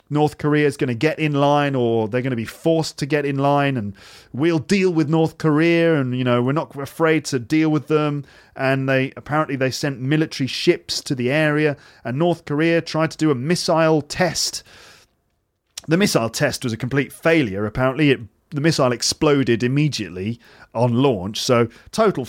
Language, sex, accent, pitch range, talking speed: English, male, British, 120-155 Hz, 190 wpm